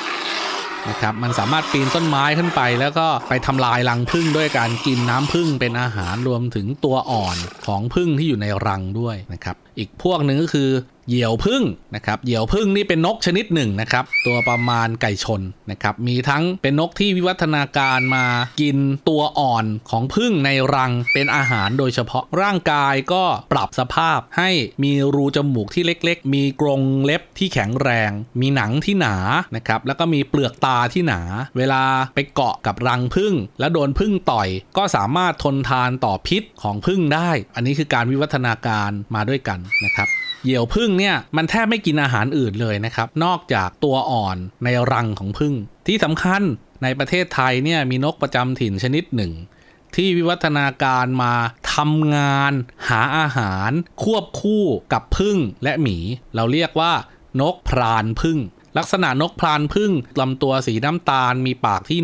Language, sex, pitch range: Thai, male, 120-160 Hz